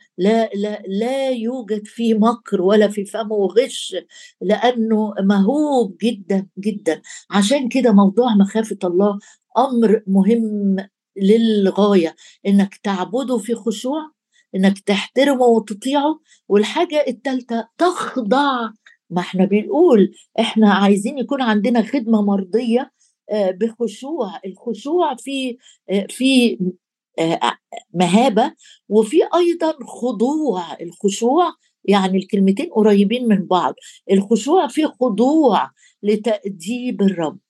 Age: 60-79